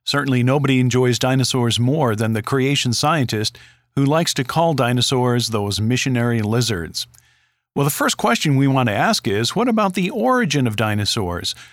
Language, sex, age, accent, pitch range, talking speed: English, male, 50-69, American, 120-150 Hz, 165 wpm